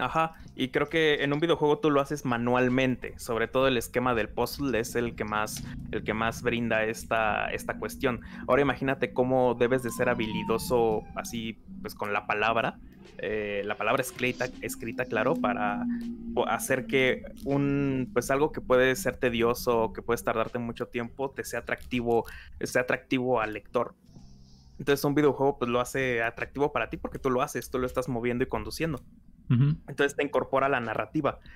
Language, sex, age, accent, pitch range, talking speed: Spanish, male, 20-39, Mexican, 115-140 Hz, 175 wpm